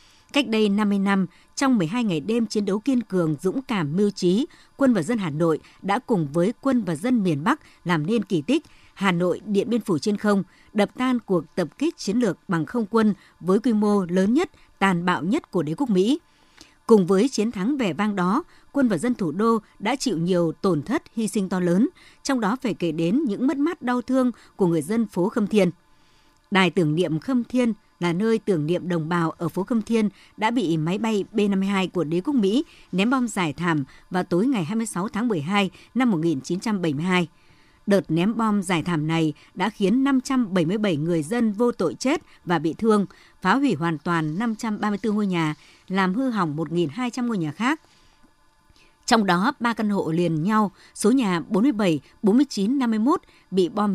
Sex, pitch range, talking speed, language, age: male, 175-235 Hz, 200 wpm, Vietnamese, 60-79